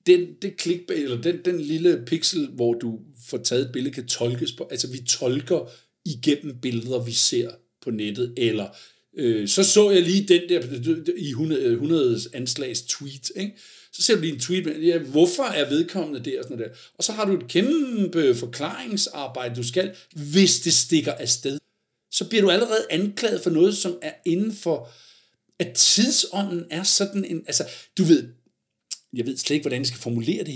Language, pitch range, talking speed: Danish, 125-185 Hz, 190 wpm